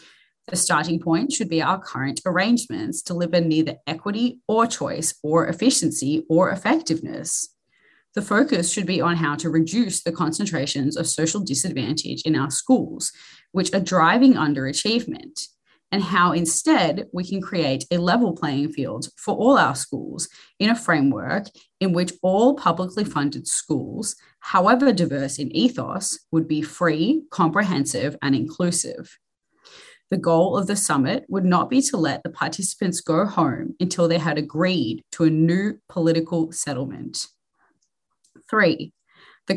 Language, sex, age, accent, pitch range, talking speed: English, female, 20-39, Australian, 155-205 Hz, 145 wpm